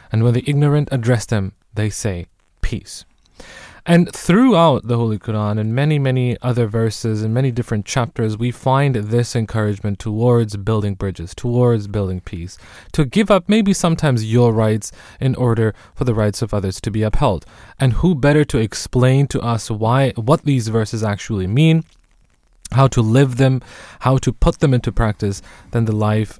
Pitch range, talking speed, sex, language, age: 105-130 Hz, 175 wpm, male, English, 20-39